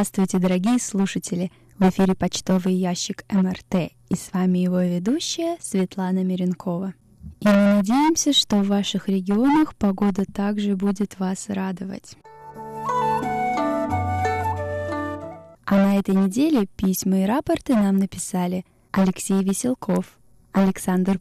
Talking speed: 110 wpm